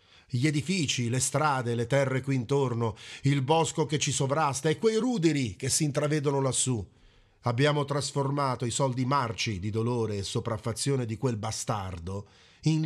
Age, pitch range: 40-59, 95-135 Hz